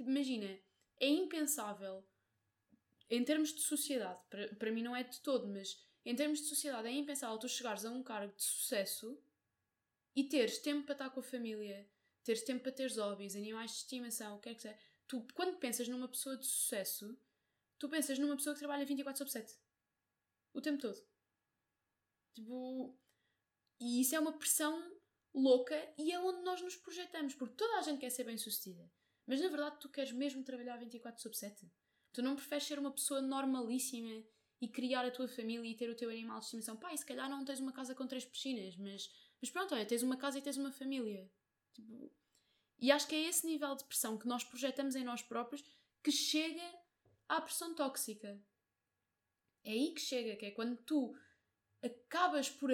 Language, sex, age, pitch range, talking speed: Portuguese, female, 10-29, 230-290 Hz, 190 wpm